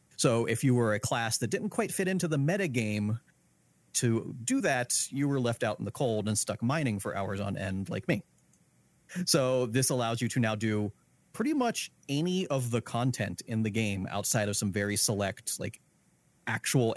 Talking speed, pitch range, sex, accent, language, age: 195 wpm, 105-130 Hz, male, American, English, 30-49